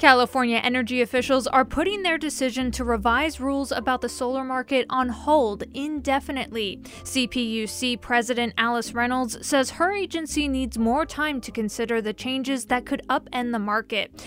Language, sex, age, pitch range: English, female, 20-39, 230-280 Hz